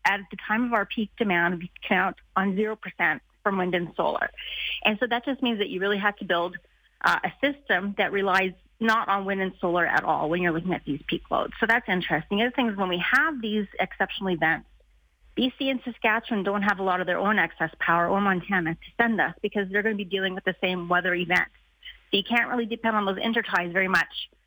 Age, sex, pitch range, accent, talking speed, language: 30-49, female, 185-225 Hz, American, 235 wpm, English